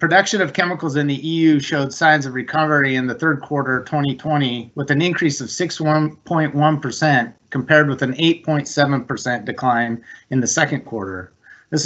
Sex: male